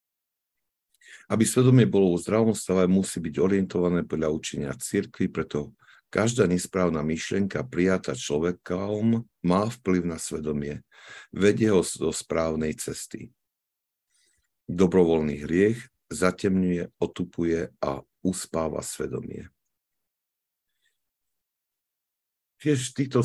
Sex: male